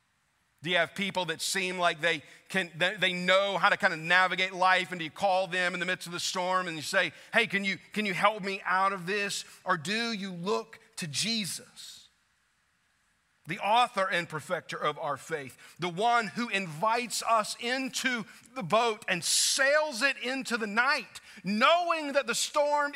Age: 40-59